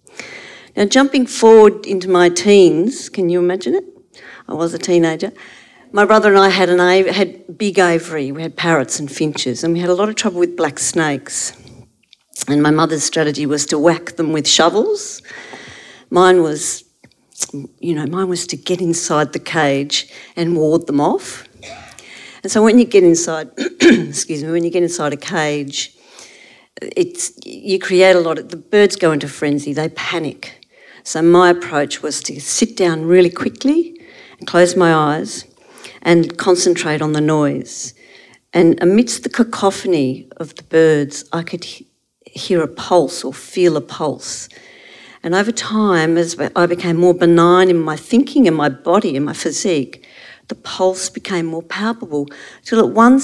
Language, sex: English, female